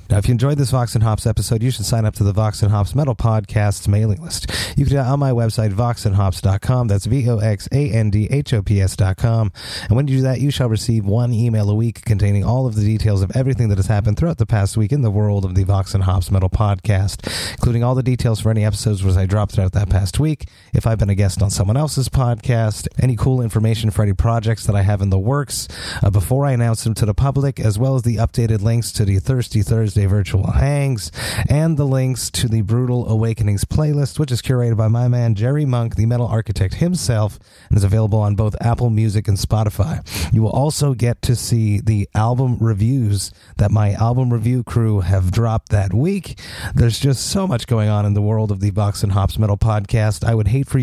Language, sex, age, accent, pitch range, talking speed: English, male, 30-49, American, 105-125 Hz, 225 wpm